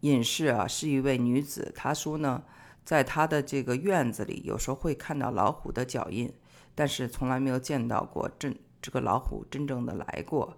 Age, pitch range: 50-69, 120-150 Hz